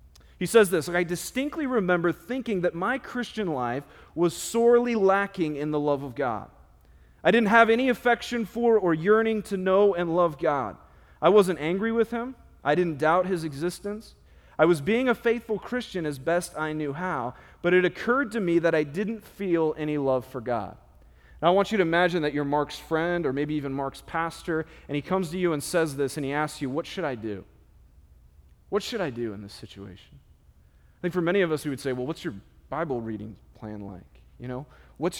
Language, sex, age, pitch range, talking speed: English, male, 30-49, 135-190 Hz, 210 wpm